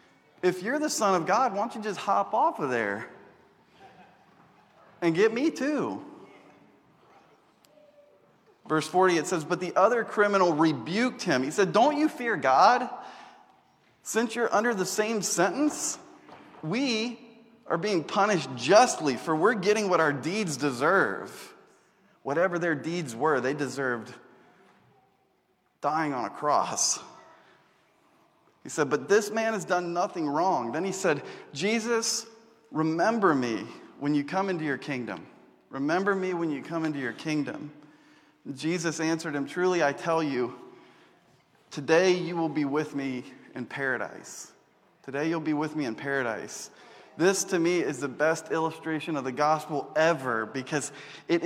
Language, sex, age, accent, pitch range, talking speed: English, male, 30-49, American, 150-205 Hz, 145 wpm